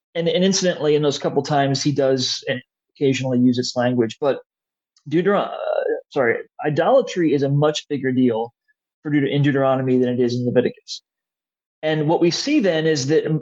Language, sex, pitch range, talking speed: English, male, 135-165 Hz, 175 wpm